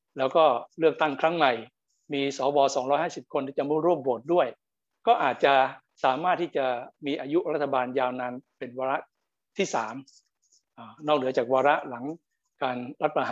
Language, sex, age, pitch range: Thai, male, 60-79, 130-165 Hz